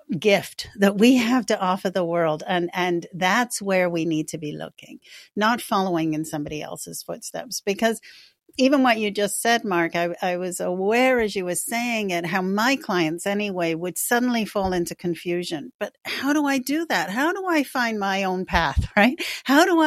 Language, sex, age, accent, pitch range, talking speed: English, female, 50-69, American, 175-235 Hz, 195 wpm